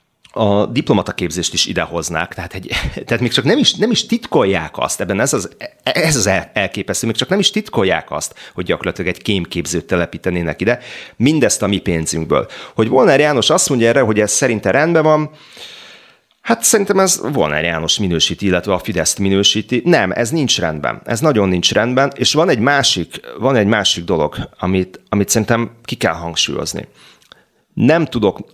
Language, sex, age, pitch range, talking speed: Hungarian, male, 30-49, 85-115 Hz, 170 wpm